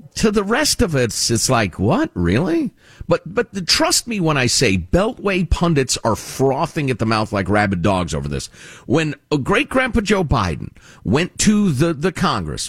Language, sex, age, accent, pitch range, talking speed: English, male, 50-69, American, 120-185 Hz, 185 wpm